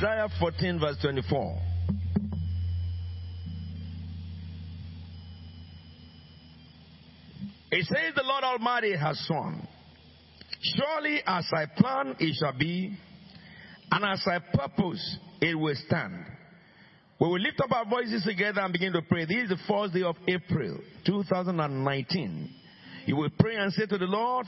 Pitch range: 150-205 Hz